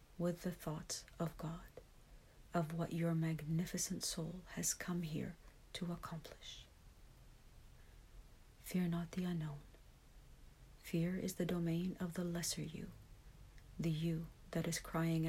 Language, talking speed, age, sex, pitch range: English, 125 wpm, 50-69, female, 160-175 Hz